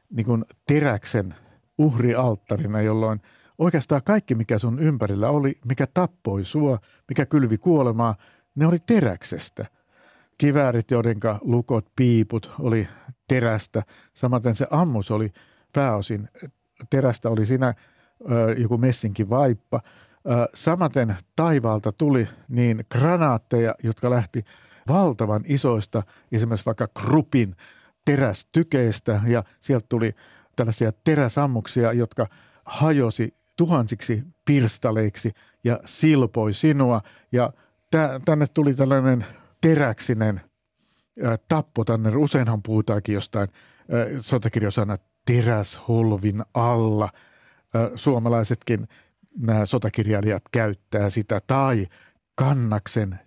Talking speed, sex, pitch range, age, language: 90 wpm, male, 110-135 Hz, 60-79, Finnish